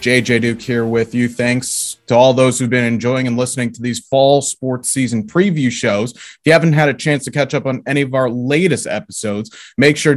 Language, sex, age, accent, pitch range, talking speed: English, male, 30-49, American, 115-150 Hz, 225 wpm